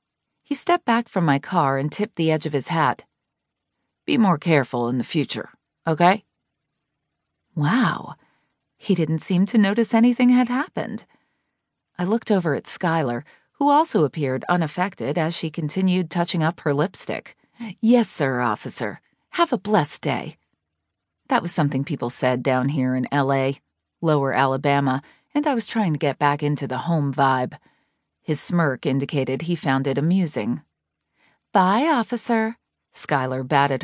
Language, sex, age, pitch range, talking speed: English, female, 40-59, 140-230 Hz, 150 wpm